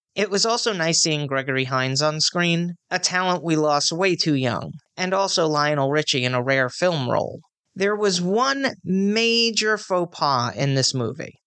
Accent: American